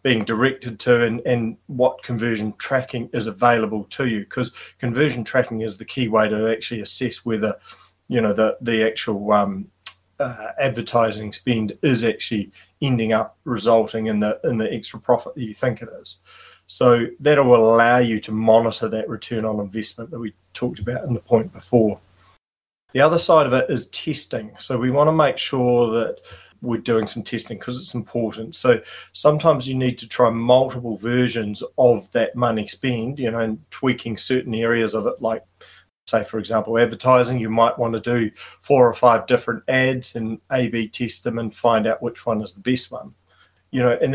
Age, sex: 30-49, male